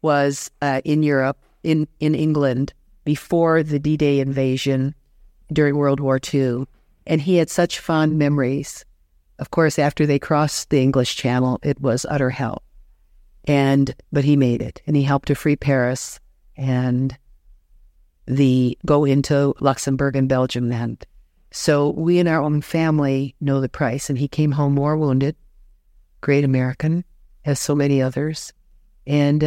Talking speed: 150 wpm